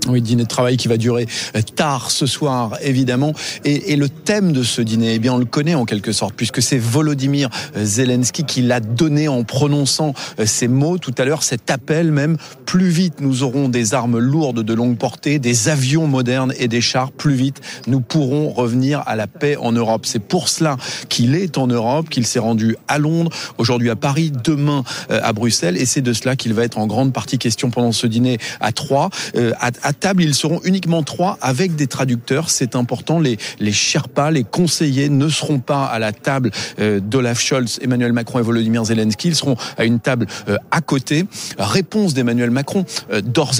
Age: 40-59